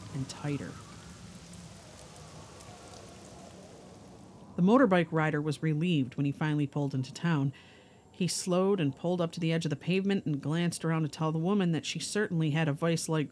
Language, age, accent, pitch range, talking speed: English, 50-69, American, 140-175 Hz, 165 wpm